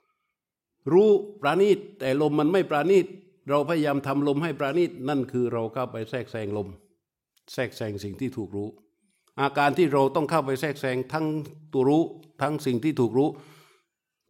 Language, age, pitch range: Thai, 60-79, 125-155 Hz